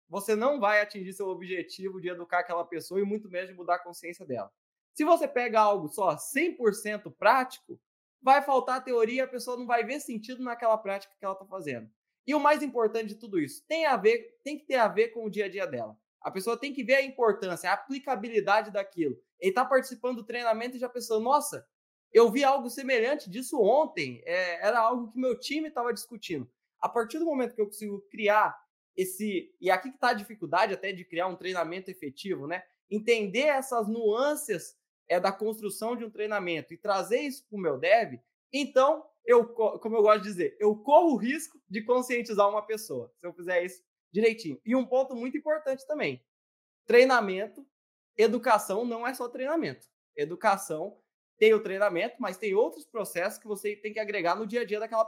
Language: Portuguese